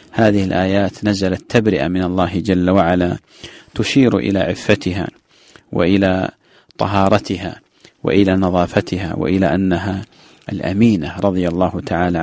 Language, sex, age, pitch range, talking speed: English, male, 40-59, 90-100 Hz, 105 wpm